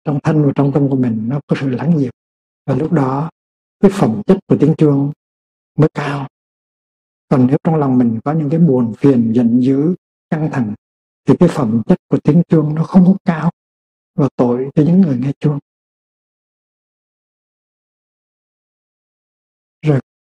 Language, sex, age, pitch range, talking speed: Vietnamese, male, 60-79, 125-160 Hz, 165 wpm